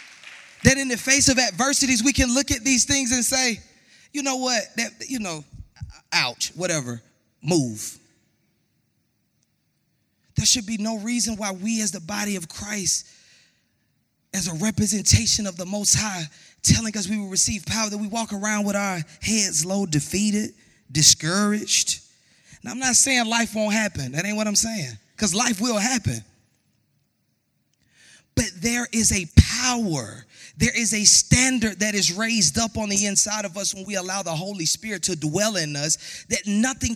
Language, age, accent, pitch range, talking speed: English, 20-39, American, 170-225 Hz, 170 wpm